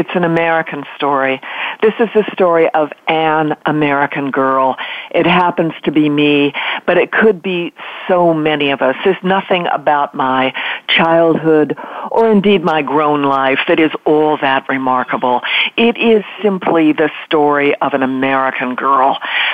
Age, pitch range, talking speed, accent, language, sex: 50-69, 140-185 Hz, 150 wpm, American, English, female